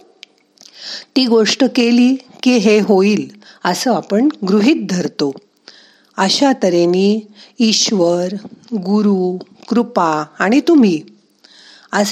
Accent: native